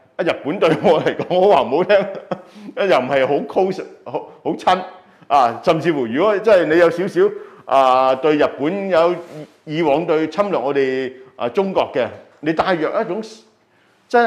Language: Chinese